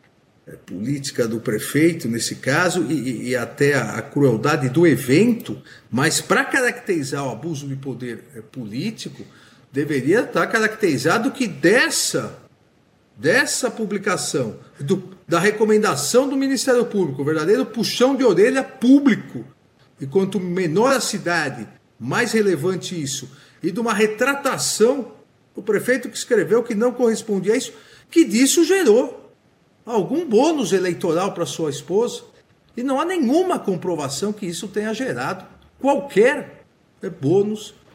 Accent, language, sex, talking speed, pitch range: Brazilian, Portuguese, male, 125 wpm, 140-230 Hz